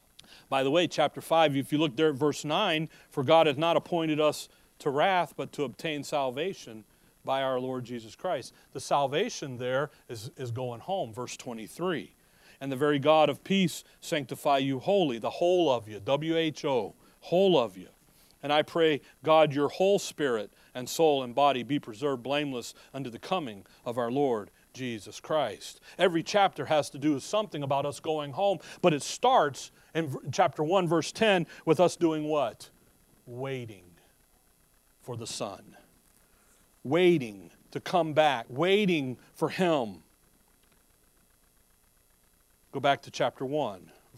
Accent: American